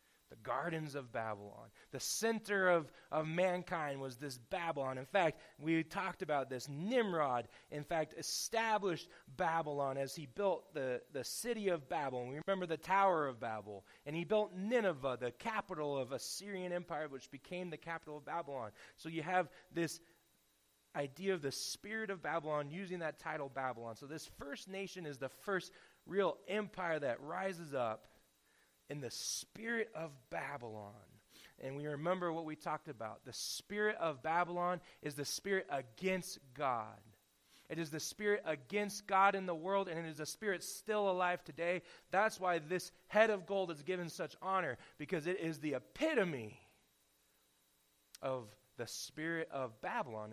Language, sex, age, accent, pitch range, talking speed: English, male, 30-49, American, 125-185 Hz, 160 wpm